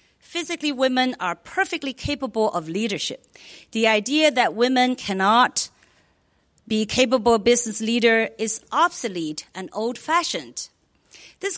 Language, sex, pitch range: English, female, 215-280 Hz